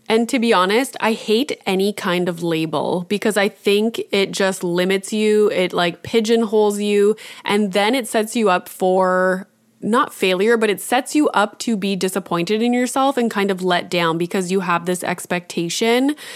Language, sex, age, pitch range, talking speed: English, female, 20-39, 190-245 Hz, 185 wpm